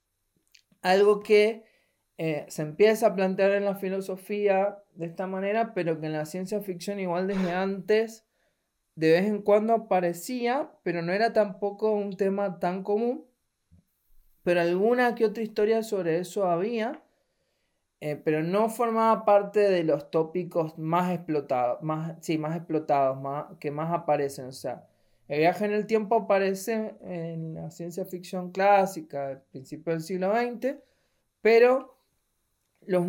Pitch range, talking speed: 165-215 Hz, 145 wpm